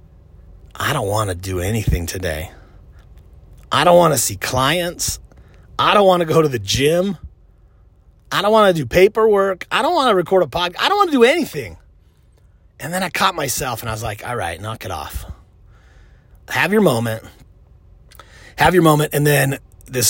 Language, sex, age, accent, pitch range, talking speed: English, male, 30-49, American, 95-145 Hz, 190 wpm